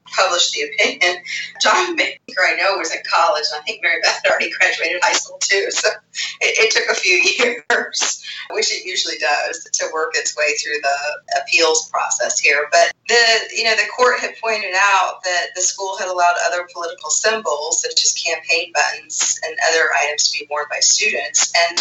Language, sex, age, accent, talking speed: English, female, 30-49, American, 195 wpm